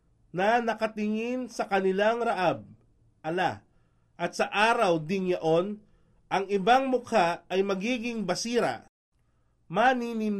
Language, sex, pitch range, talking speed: Filipino, male, 180-230 Hz, 105 wpm